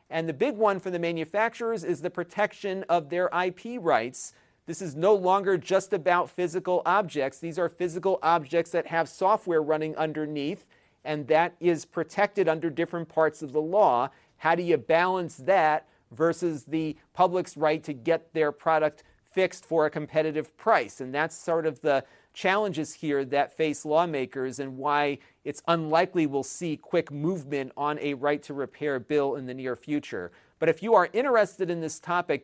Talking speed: 175 wpm